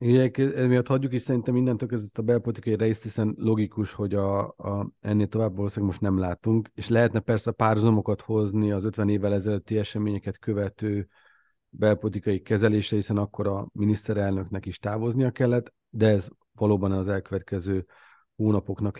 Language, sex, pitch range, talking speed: Hungarian, male, 100-115 Hz, 145 wpm